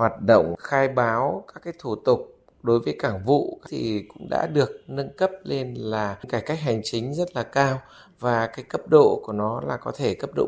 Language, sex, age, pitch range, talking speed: Vietnamese, male, 20-39, 120-165 Hz, 220 wpm